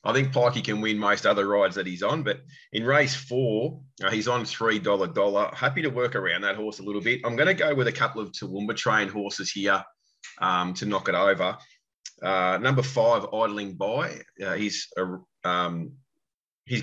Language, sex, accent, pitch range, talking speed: English, male, Australian, 95-120 Hz, 195 wpm